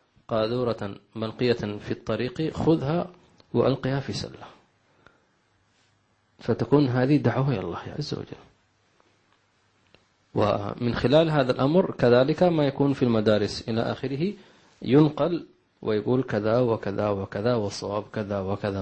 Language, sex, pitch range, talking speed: English, male, 105-125 Hz, 105 wpm